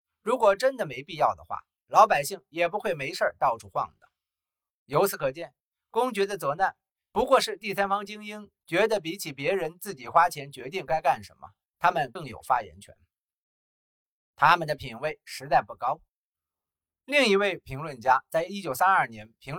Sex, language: male, Chinese